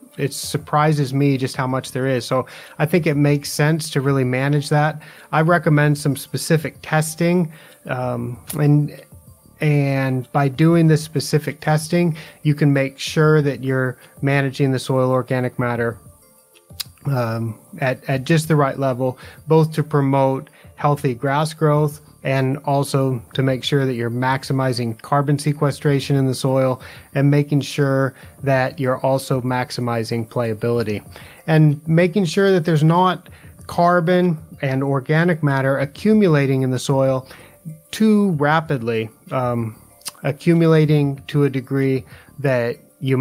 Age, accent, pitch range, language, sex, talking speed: 30-49, American, 130-150 Hz, English, male, 135 wpm